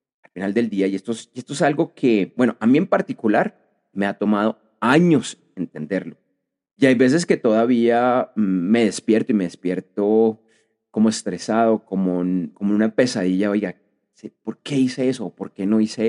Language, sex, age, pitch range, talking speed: Spanish, male, 30-49, 105-145 Hz, 170 wpm